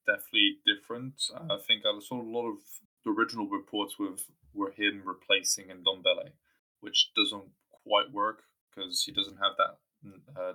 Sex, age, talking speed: male, 20-39, 160 wpm